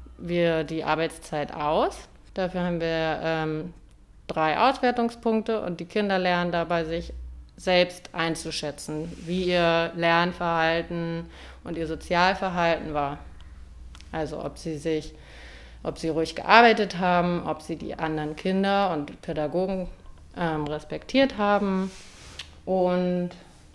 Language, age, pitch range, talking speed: German, 30-49, 155-190 Hz, 115 wpm